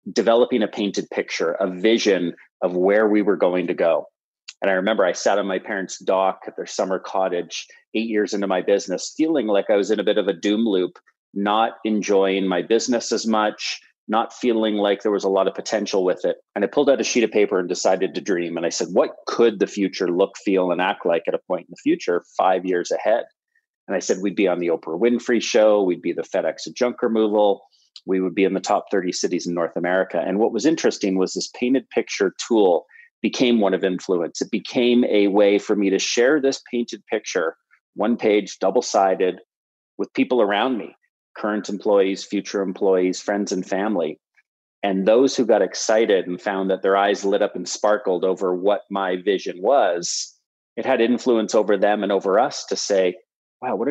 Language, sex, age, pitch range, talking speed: English, male, 30-49, 95-115 Hz, 210 wpm